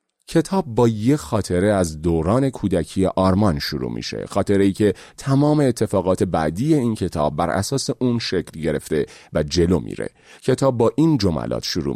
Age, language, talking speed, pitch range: 30-49, Persian, 155 wpm, 90-125 Hz